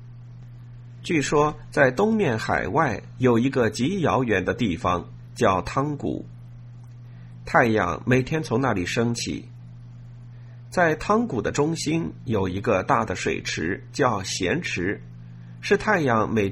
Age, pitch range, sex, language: 50-69, 75-125 Hz, male, Chinese